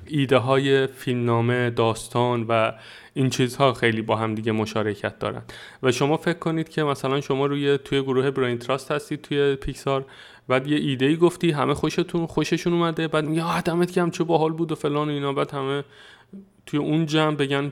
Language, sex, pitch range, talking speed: Persian, male, 120-145 Hz, 185 wpm